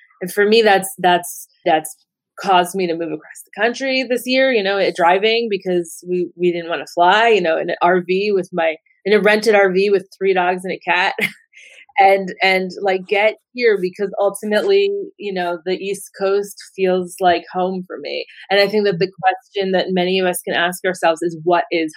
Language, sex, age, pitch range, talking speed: English, female, 20-39, 170-205 Hz, 205 wpm